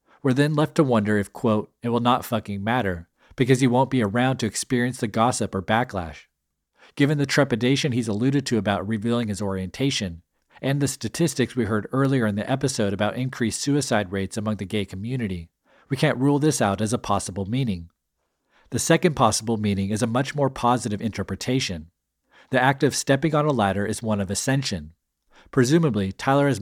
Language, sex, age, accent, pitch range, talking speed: English, male, 40-59, American, 100-130 Hz, 185 wpm